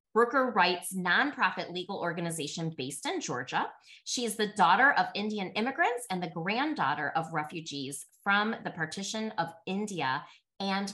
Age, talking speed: 20-39, 145 wpm